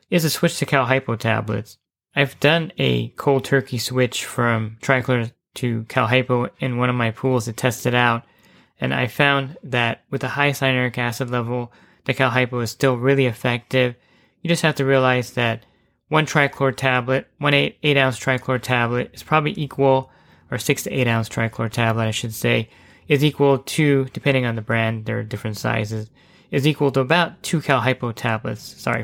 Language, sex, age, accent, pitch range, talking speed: English, male, 20-39, American, 120-135 Hz, 185 wpm